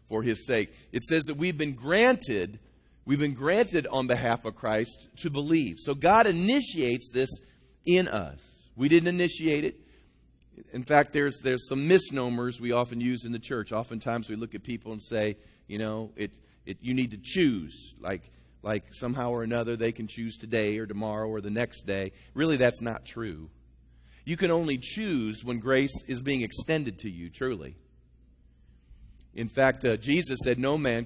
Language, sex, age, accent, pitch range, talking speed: English, male, 40-59, American, 105-155 Hz, 180 wpm